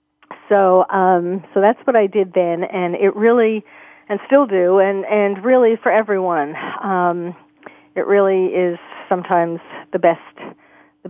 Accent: American